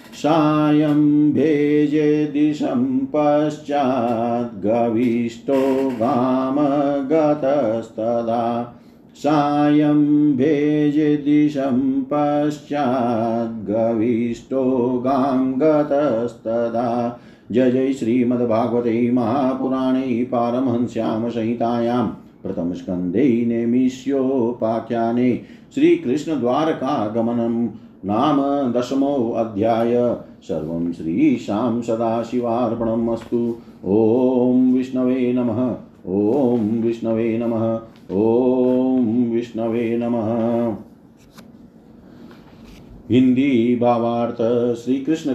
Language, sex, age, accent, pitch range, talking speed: Hindi, male, 50-69, native, 115-145 Hz, 45 wpm